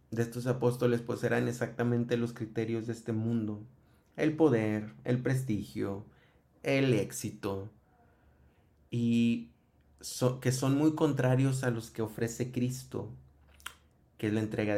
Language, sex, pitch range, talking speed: Spanish, male, 100-120 Hz, 130 wpm